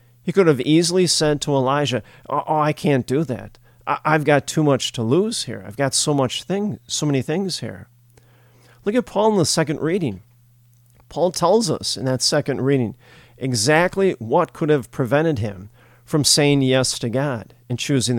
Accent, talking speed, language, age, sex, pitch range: American, 180 wpm, English, 40-59, male, 120-155 Hz